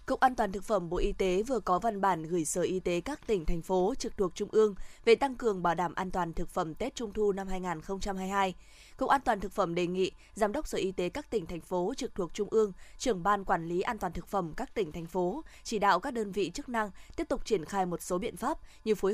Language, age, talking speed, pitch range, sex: Vietnamese, 20-39, 275 wpm, 185-225 Hz, female